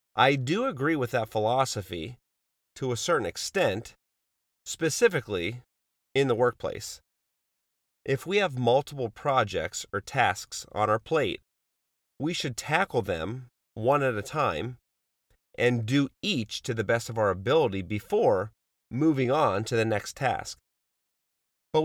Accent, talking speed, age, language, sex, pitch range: American, 135 wpm, 30-49, English, male, 95-145 Hz